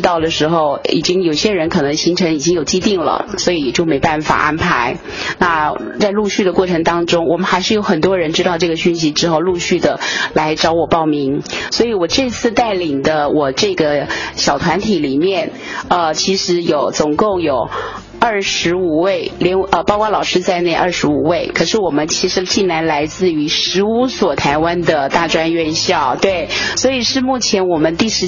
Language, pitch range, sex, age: Chinese, 165-195 Hz, female, 30-49